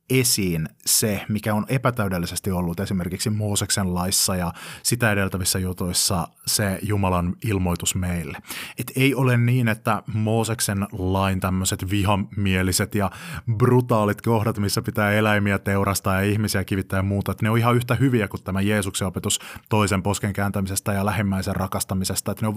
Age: 30-49